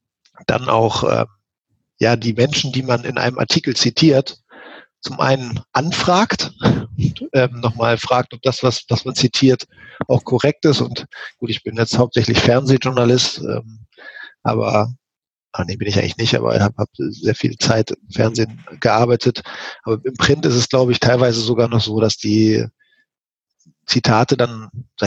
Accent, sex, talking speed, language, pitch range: German, male, 165 wpm, German, 115-140 Hz